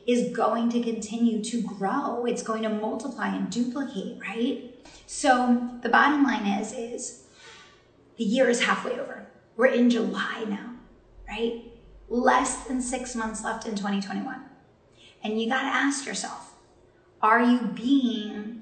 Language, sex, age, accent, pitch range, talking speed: English, female, 30-49, American, 210-250 Hz, 145 wpm